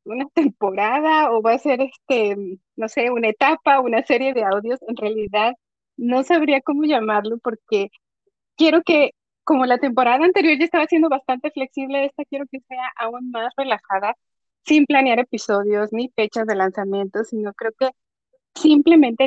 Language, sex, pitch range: Spanish, female, 225-290 Hz